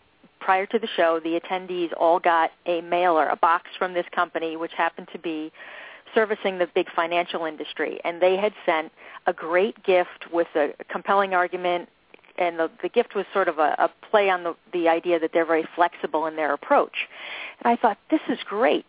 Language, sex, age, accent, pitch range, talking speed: English, female, 40-59, American, 170-200 Hz, 195 wpm